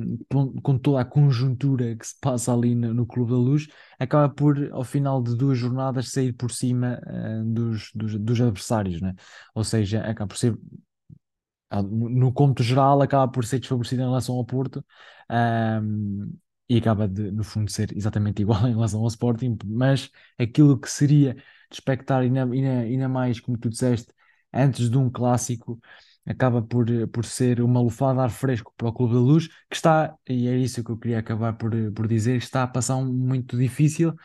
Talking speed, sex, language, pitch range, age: 195 wpm, male, Portuguese, 115-135 Hz, 20-39